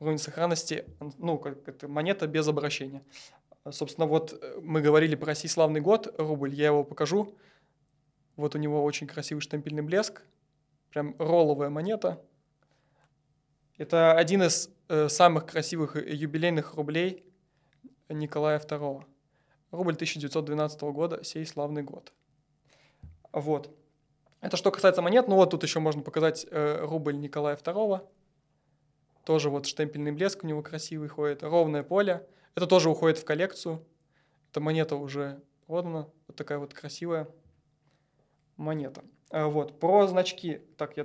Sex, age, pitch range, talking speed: male, 20-39, 150-165 Hz, 130 wpm